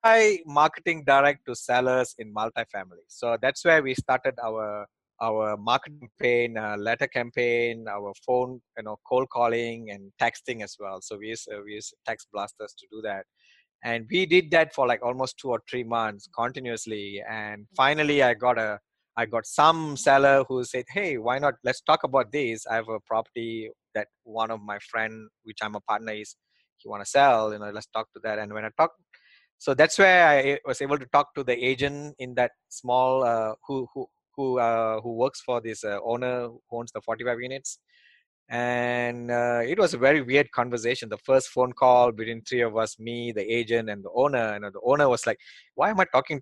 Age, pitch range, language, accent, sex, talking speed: 20-39, 110-135 Hz, English, Indian, male, 205 wpm